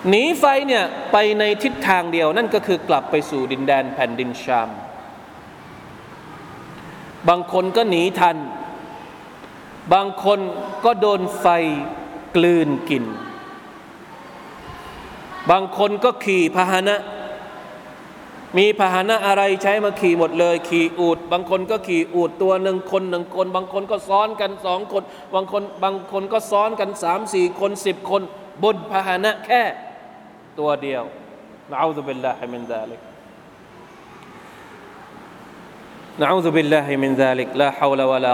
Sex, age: male, 20-39